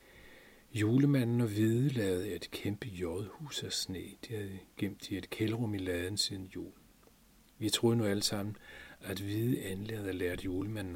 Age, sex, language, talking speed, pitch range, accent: 40-59, male, Danish, 165 wpm, 95-115 Hz, native